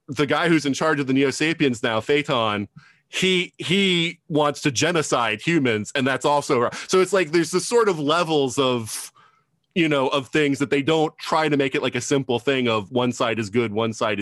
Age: 30-49